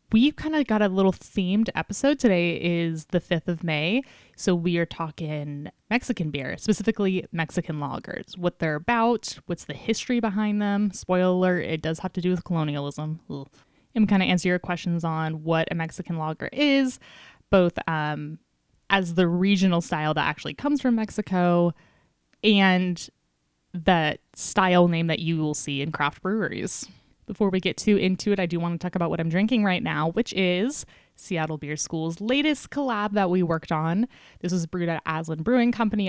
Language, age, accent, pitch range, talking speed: English, 10-29, American, 160-200 Hz, 180 wpm